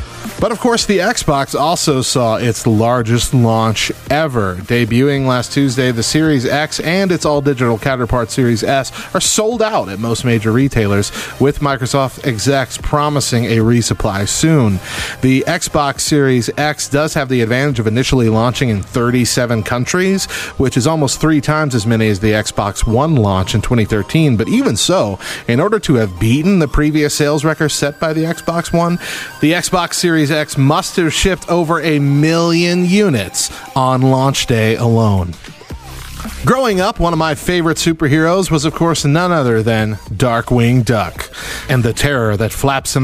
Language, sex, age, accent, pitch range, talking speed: English, male, 30-49, American, 110-155 Hz, 165 wpm